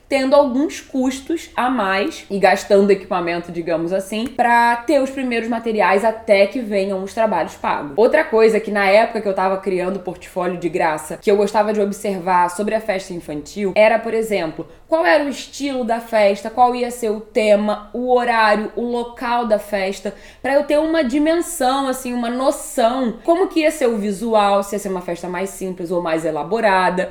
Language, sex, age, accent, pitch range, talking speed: Portuguese, female, 10-29, Brazilian, 195-245 Hz, 195 wpm